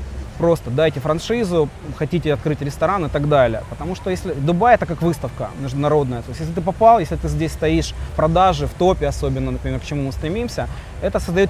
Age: 20-39